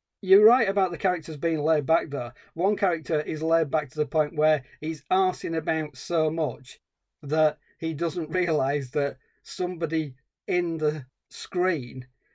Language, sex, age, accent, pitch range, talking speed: English, male, 40-59, British, 145-185 Hz, 155 wpm